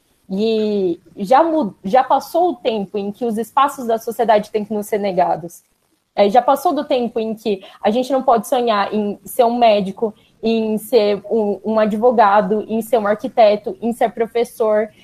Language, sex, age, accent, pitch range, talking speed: Portuguese, female, 20-39, Brazilian, 215-285 Hz, 175 wpm